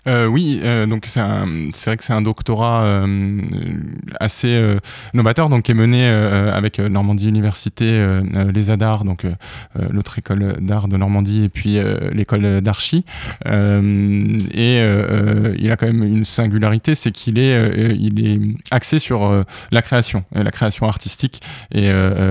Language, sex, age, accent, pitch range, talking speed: French, male, 20-39, French, 100-115 Hz, 170 wpm